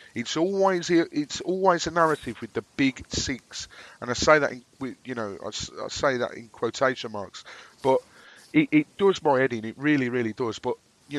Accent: British